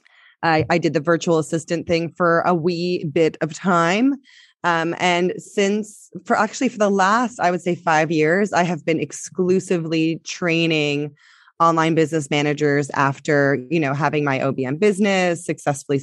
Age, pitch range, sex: 20-39, 150-180 Hz, female